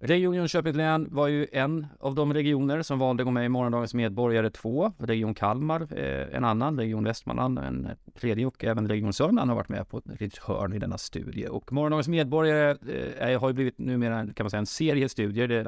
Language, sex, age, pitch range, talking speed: Swedish, male, 30-49, 100-125 Hz, 205 wpm